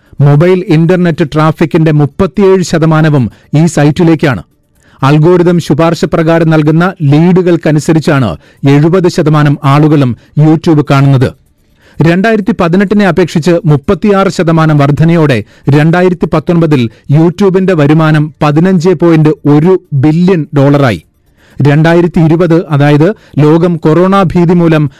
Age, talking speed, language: 30-49, 80 wpm, Malayalam